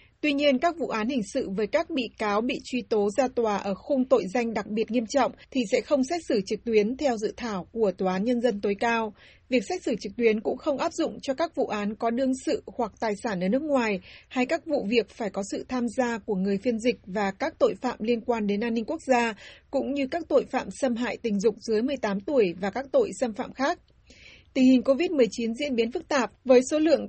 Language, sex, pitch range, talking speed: Vietnamese, female, 215-270 Hz, 255 wpm